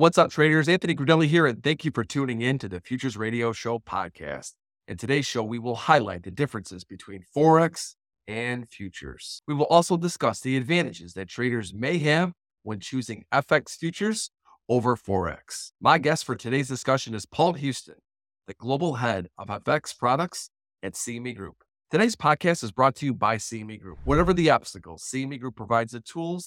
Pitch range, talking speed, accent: 110-150 Hz, 180 wpm, American